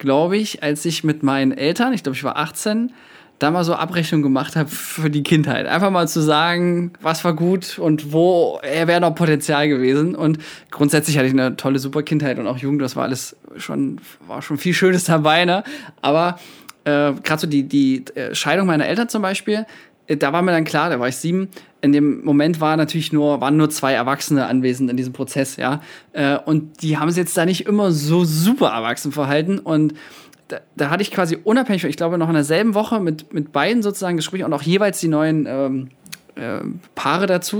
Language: German